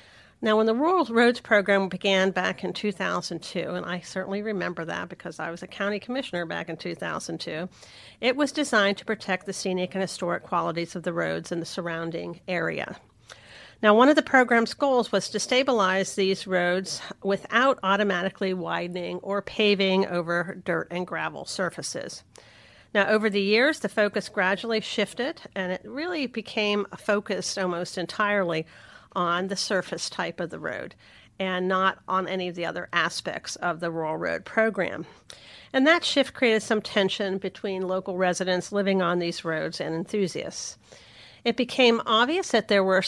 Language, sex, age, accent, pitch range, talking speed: English, female, 50-69, American, 180-215 Hz, 165 wpm